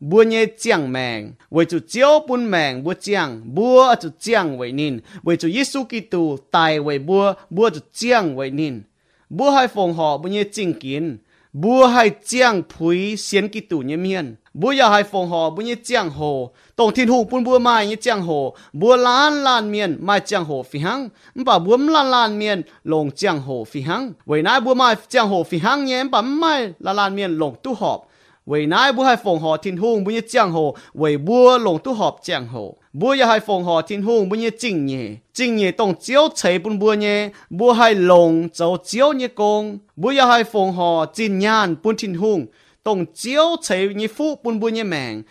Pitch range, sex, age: 165-240 Hz, male, 30-49